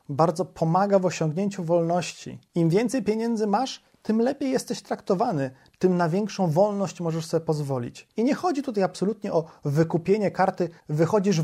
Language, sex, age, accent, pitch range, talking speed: Polish, male, 30-49, native, 160-205 Hz, 150 wpm